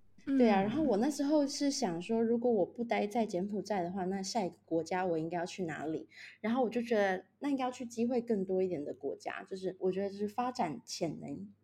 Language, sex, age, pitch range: Chinese, female, 20-39, 180-230 Hz